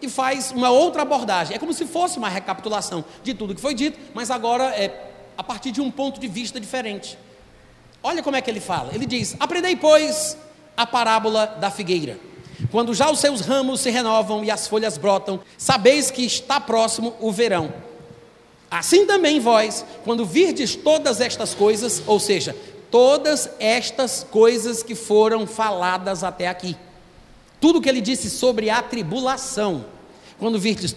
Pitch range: 215-275 Hz